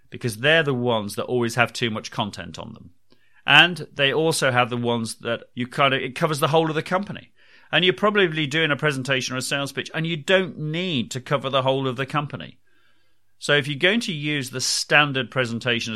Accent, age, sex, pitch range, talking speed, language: British, 40-59, male, 110-145 Hz, 220 wpm, English